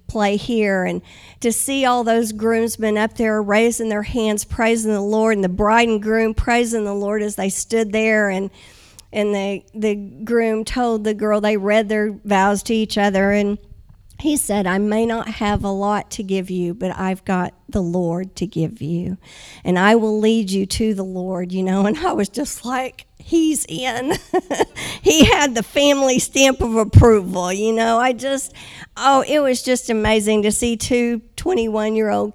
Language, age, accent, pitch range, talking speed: English, 50-69, American, 190-225 Hz, 185 wpm